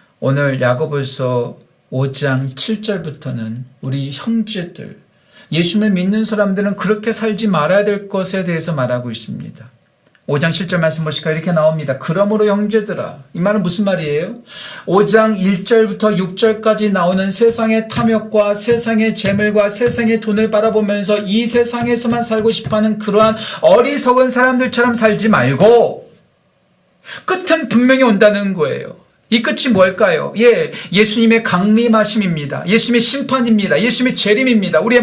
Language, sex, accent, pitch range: Korean, male, native, 180-230 Hz